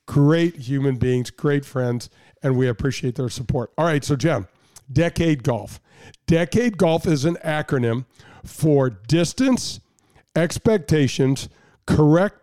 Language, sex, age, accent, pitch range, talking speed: English, male, 50-69, American, 130-165 Hz, 120 wpm